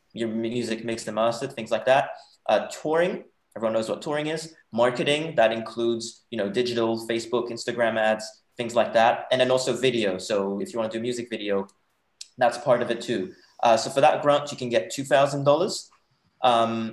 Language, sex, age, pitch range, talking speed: English, male, 20-39, 115-140 Hz, 190 wpm